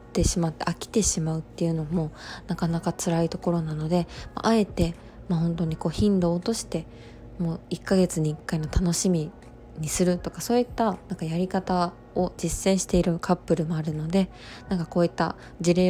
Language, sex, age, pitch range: Japanese, female, 20-39, 165-185 Hz